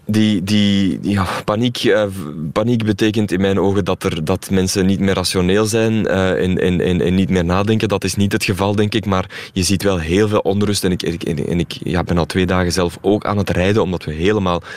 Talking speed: 235 wpm